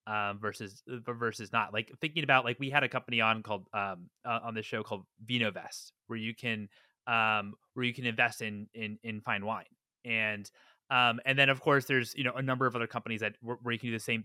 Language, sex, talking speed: English, male, 240 wpm